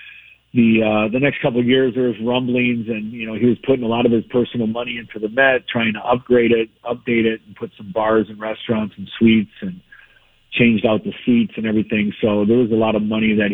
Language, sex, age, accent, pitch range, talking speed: English, male, 40-59, American, 110-125 Hz, 240 wpm